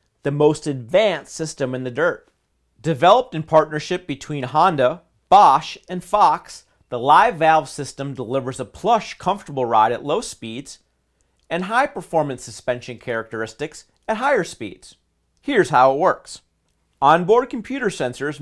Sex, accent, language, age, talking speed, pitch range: male, American, English, 40-59, 135 wpm, 130-185 Hz